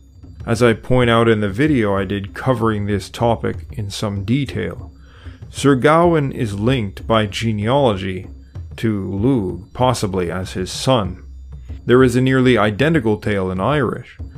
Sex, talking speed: male, 145 wpm